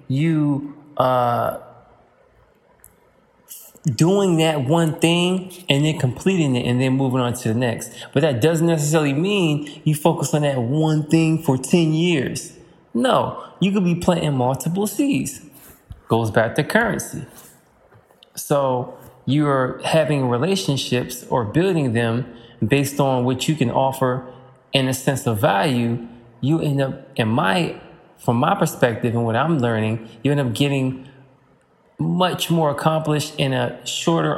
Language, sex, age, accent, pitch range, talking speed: English, male, 20-39, American, 120-155 Hz, 145 wpm